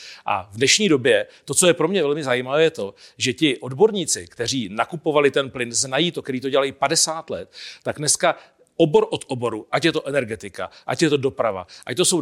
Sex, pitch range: male, 135-160 Hz